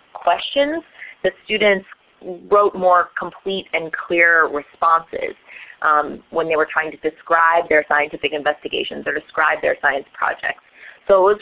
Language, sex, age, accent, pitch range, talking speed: English, female, 20-39, American, 160-205 Hz, 140 wpm